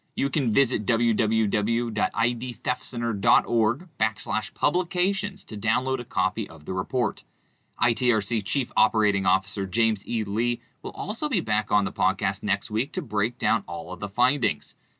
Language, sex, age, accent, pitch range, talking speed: English, male, 20-39, American, 105-140 Hz, 145 wpm